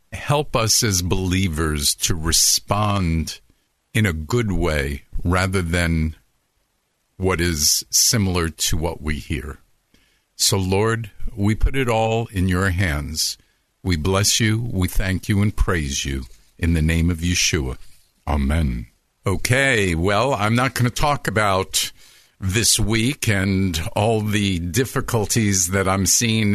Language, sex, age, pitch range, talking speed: English, male, 50-69, 95-120 Hz, 135 wpm